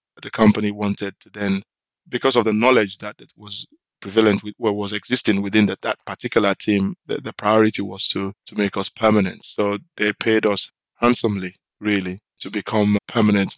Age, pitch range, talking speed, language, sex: 20-39, 100-115 Hz, 170 wpm, English, male